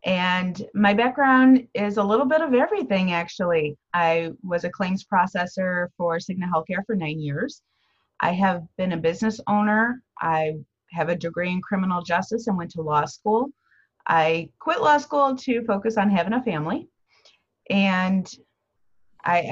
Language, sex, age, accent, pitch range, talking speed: English, female, 30-49, American, 175-220 Hz, 155 wpm